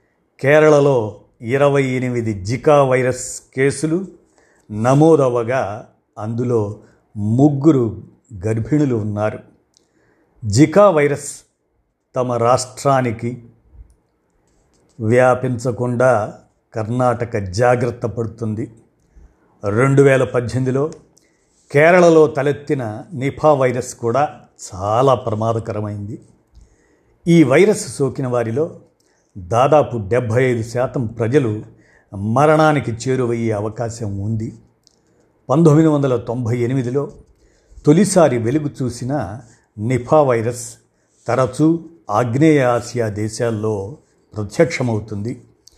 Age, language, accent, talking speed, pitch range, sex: 50-69, Telugu, native, 70 wpm, 110-145 Hz, male